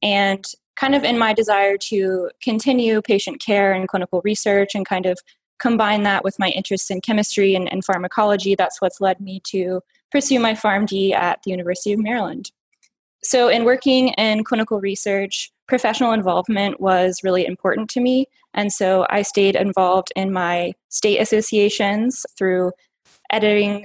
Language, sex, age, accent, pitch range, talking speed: English, female, 10-29, American, 190-215 Hz, 160 wpm